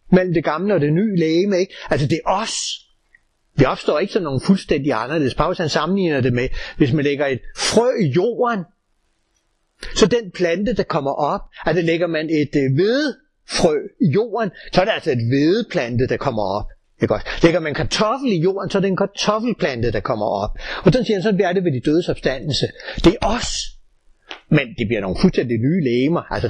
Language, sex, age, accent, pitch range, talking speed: Danish, male, 60-79, native, 125-180 Hz, 210 wpm